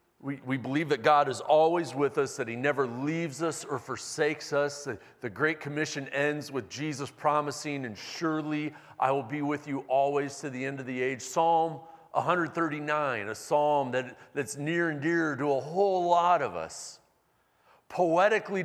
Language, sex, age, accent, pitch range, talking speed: English, male, 40-59, American, 130-165 Hz, 175 wpm